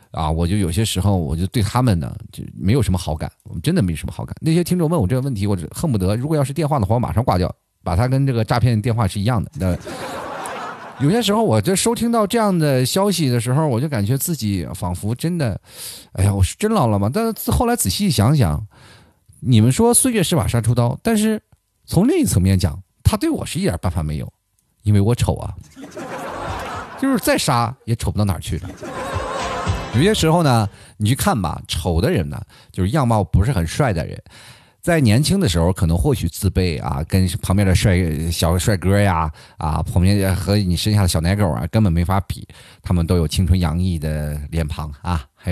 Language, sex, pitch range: Chinese, male, 90-125 Hz